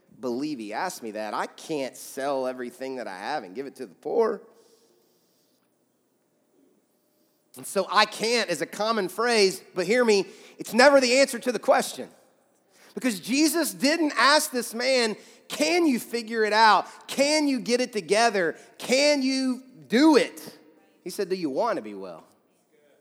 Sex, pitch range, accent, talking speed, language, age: male, 150-240 Hz, American, 165 wpm, English, 30-49